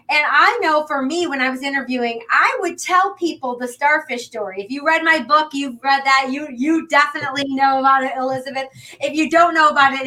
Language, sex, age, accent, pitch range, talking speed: English, female, 30-49, American, 255-320 Hz, 220 wpm